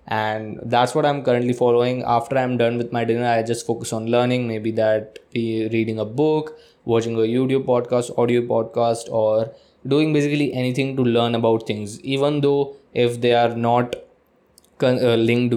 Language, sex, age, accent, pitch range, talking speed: Hindi, male, 20-39, native, 115-130 Hz, 165 wpm